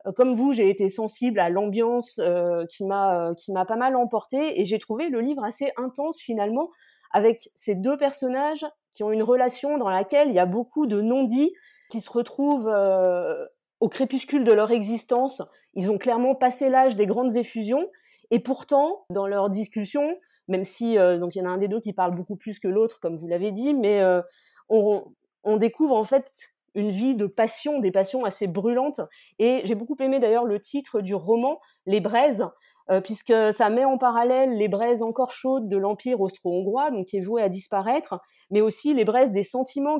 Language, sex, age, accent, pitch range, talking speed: French, female, 30-49, French, 205-265 Hz, 210 wpm